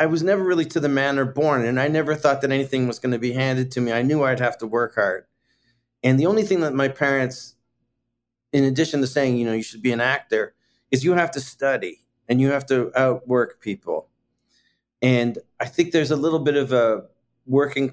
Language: English